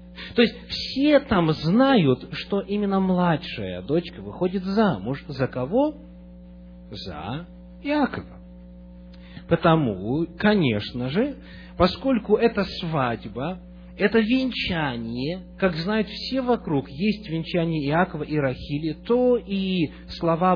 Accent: native